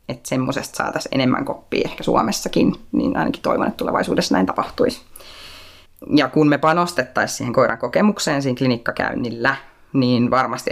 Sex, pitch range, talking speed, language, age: female, 125-150 Hz, 140 wpm, Finnish, 20-39